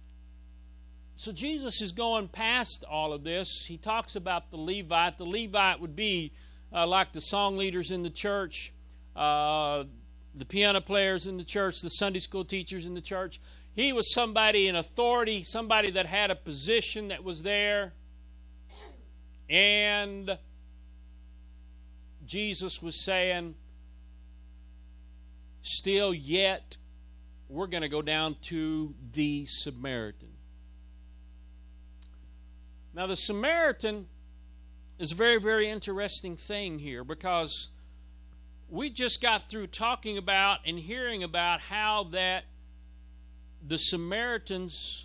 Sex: male